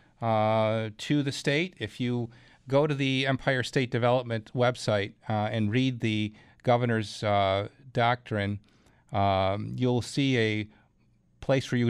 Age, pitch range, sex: 40-59, 105-130 Hz, male